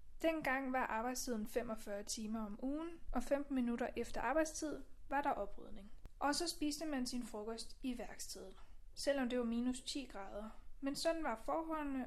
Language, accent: Danish, native